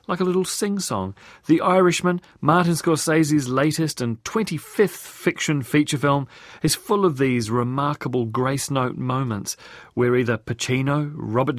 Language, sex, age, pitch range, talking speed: English, male, 40-59, 125-160 Hz, 130 wpm